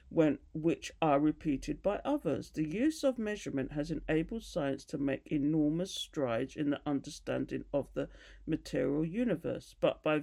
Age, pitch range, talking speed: 50-69, 145-200 Hz, 155 wpm